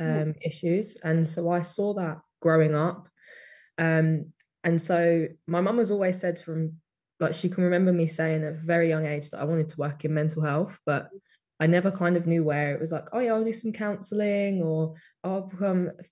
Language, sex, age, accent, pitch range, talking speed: English, female, 20-39, British, 160-180 Hz, 210 wpm